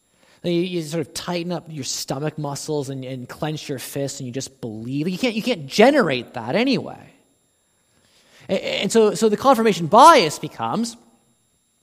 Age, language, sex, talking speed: 20-39, English, male, 160 wpm